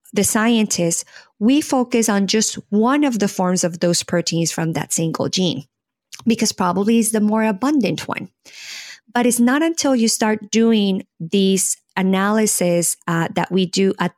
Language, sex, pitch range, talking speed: English, female, 185-230 Hz, 160 wpm